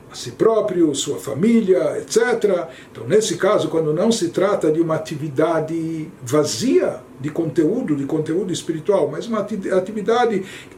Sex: male